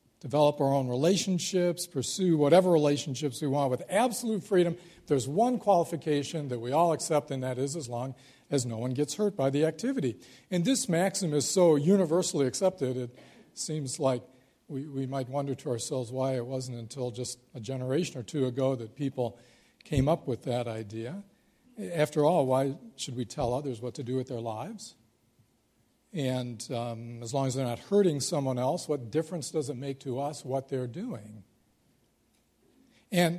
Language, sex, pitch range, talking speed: English, male, 125-160 Hz, 180 wpm